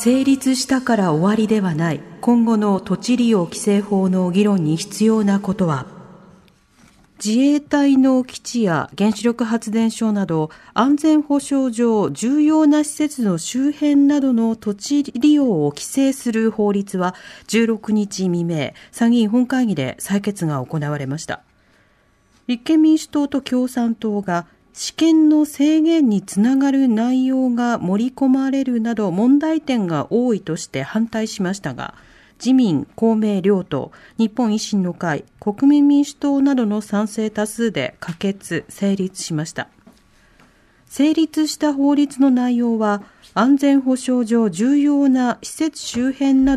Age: 40-59